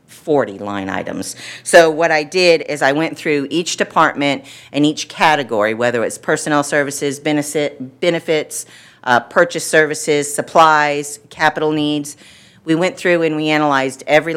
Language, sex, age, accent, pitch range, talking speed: English, female, 50-69, American, 130-150 Hz, 140 wpm